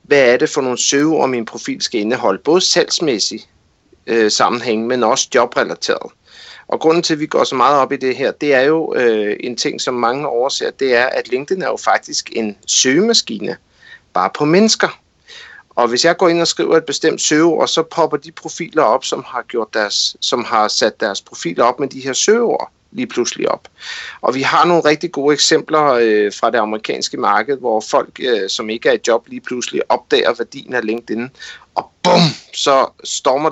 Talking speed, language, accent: 190 wpm, Danish, native